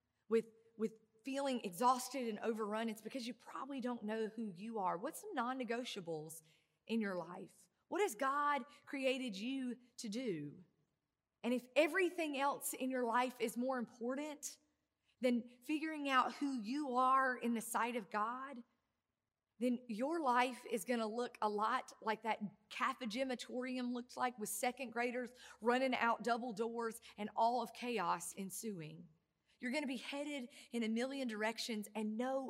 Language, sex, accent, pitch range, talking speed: English, female, American, 215-260 Hz, 155 wpm